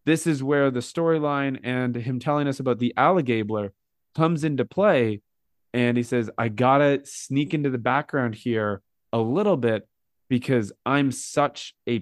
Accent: American